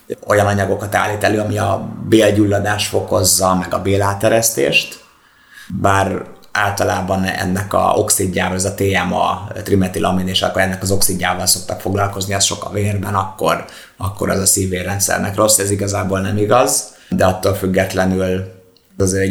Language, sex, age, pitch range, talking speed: Hungarian, male, 30-49, 95-100 Hz, 135 wpm